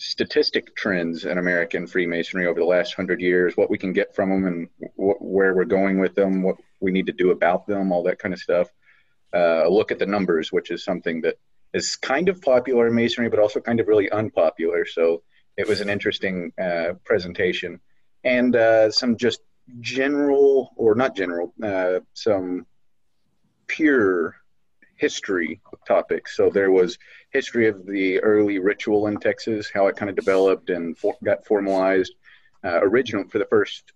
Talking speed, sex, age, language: 175 wpm, male, 30-49, English